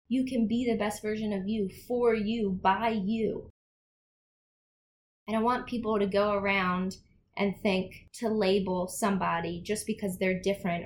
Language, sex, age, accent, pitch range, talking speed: English, female, 20-39, American, 190-230 Hz, 155 wpm